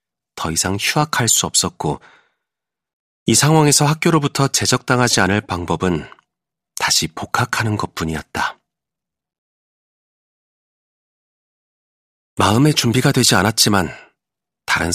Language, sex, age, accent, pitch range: Korean, male, 40-59, native, 90-135 Hz